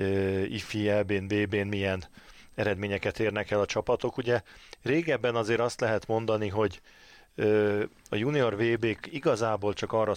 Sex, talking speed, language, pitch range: male, 130 wpm, Hungarian, 100-110 Hz